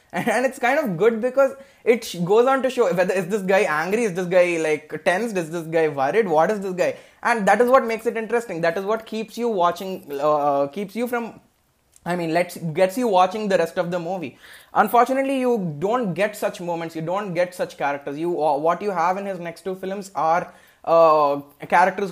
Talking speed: 220 wpm